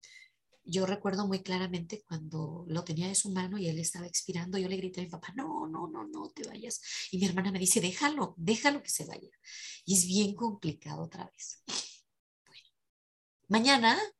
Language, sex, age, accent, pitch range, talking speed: Spanish, female, 30-49, Mexican, 175-225 Hz, 185 wpm